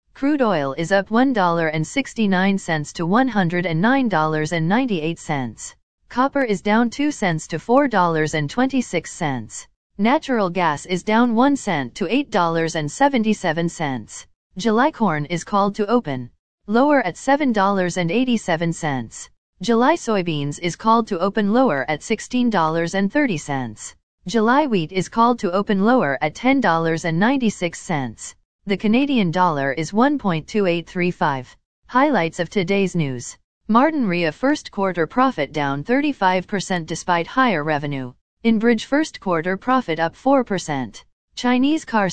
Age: 40-59